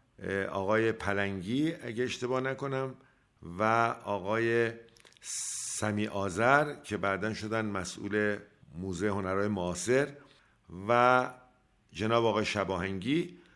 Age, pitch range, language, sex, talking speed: 50-69, 105-130 Hz, Persian, male, 90 wpm